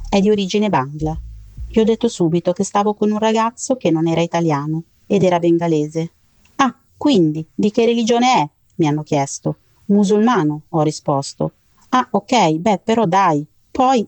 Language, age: Italian, 40-59